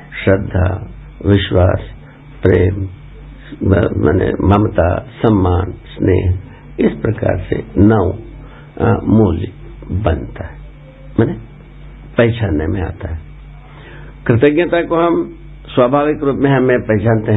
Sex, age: male, 60-79